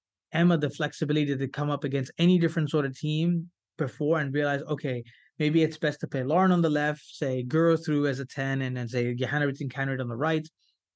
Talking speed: 220 wpm